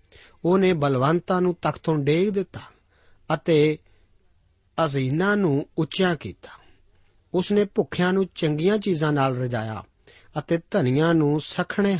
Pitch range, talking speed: 120-170 Hz, 120 wpm